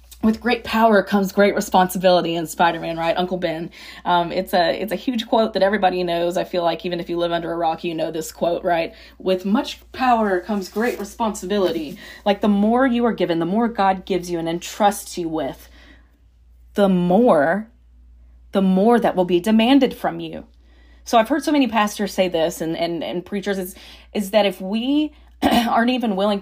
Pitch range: 175-210 Hz